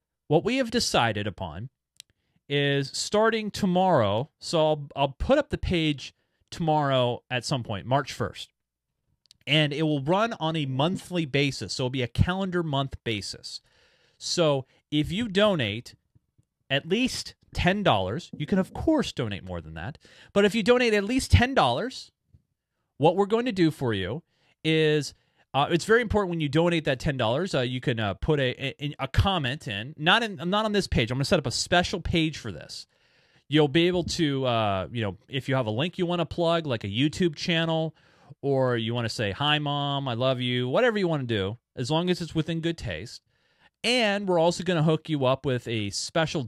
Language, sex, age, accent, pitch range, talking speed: English, male, 30-49, American, 125-170 Hz, 200 wpm